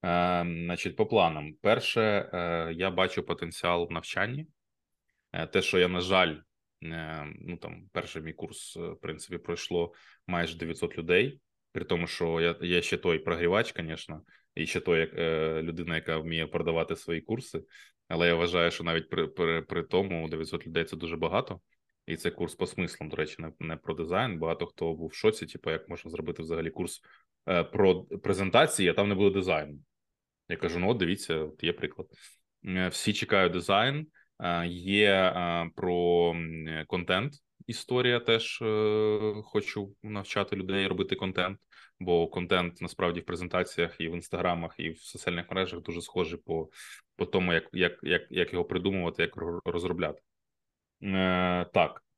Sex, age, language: male, 20-39, Ukrainian